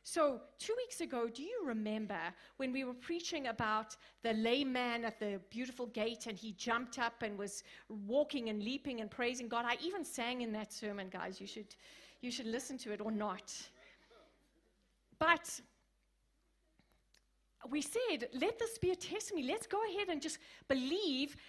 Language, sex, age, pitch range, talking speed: English, female, 30-49, 235-320 Hz, 170 wpm